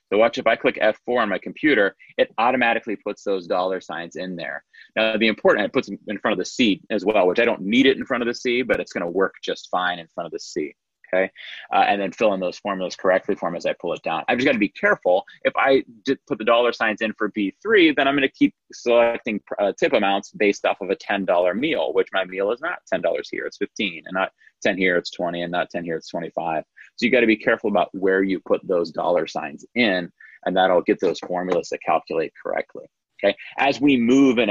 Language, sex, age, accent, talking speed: English, male, 30-49, American, 255 wpm